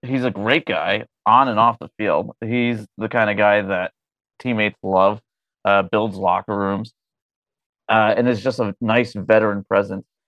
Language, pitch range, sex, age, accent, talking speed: English, 100-120 Hz, male, 30-49, American, 170 wpm